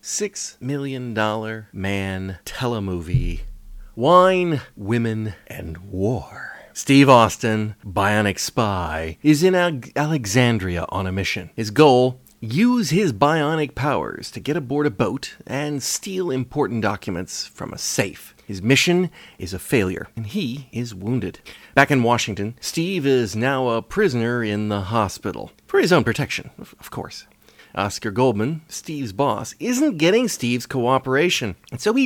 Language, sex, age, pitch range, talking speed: English, male, 30-49, 105-145 Hz, 140 wpm